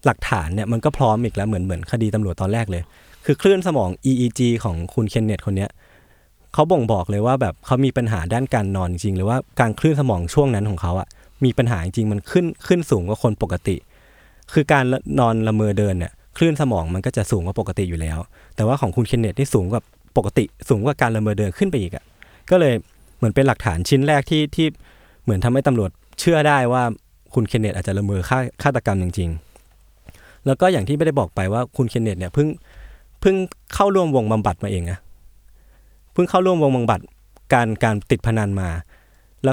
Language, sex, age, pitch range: Thai, male, 20-39, 95-135 Hz